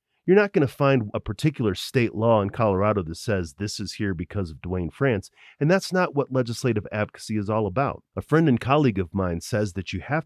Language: English